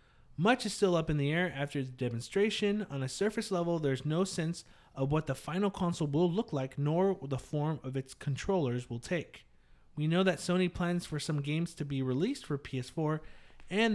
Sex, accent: male, American